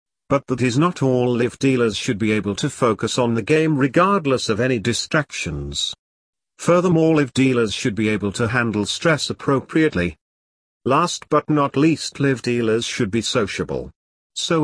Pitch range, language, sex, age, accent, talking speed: 110-150 Hz, English, male, 50-69, British, 150 wpm